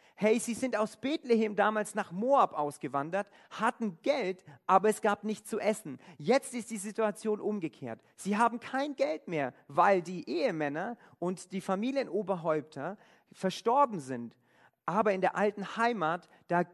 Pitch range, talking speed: 170-220 Hz, 145 wpm